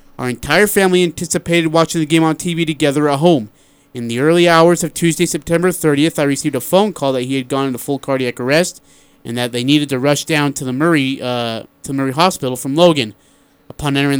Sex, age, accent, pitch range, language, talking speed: male, 30-49, American, 135-160 Hz, English, 220 wpm